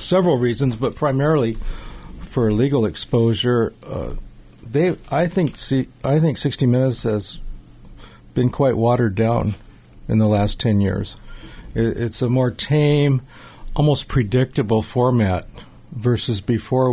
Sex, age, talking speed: male, 50-69, 130 wpm